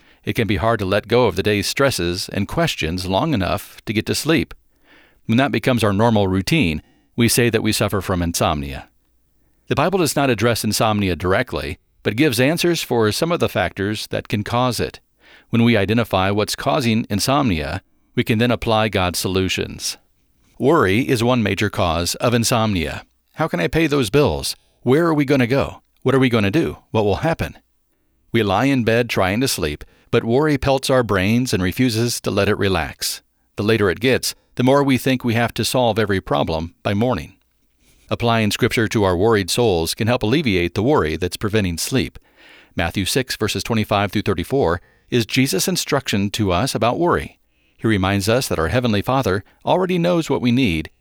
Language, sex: English, male